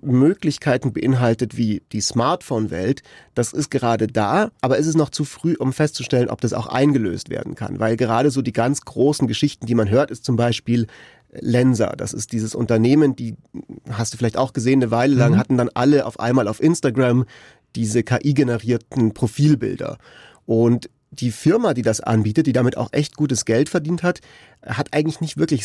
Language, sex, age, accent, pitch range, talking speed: German, male, 30-49, German, 115-140 Hz, 185 wpm